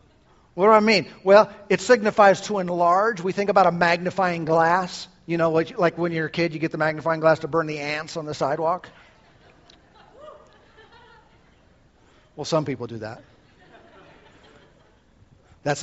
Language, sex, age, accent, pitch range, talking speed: English, male, 50-69, American, 135-175 Hz, 150 wpm